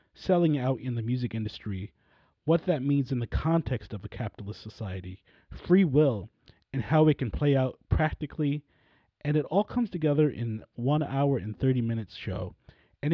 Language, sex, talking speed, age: English, male, 175 wpm, 30-49